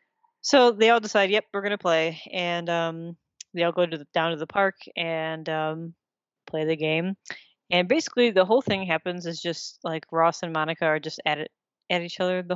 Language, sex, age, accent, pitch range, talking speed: English, female, 20-39, American, 165-190 Hz, 210 wpm